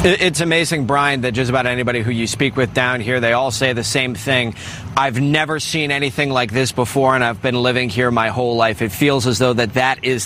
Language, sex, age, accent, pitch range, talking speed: English, male, 30-49, American, 120-145 Hz, 240 wpm